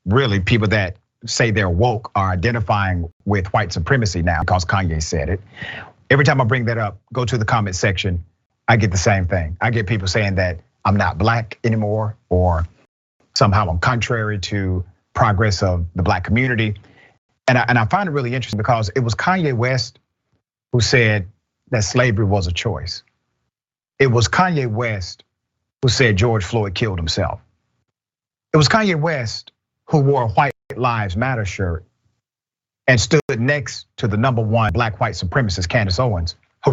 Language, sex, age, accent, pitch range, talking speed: English, male, 40-59, American, 100-130 Hz, 170 wpm